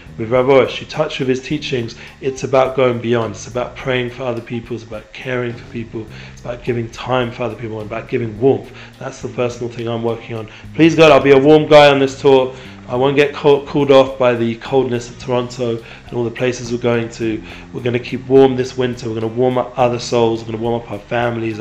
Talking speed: 245 wpm